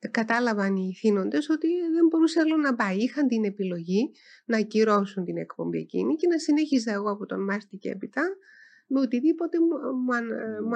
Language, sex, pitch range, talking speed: Greek, female, 205-280 Hz, 160 wpm